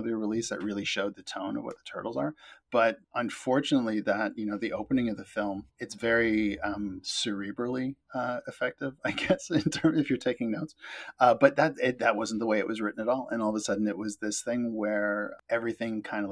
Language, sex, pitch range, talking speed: English, male, 105-135 Hz, 225 wpm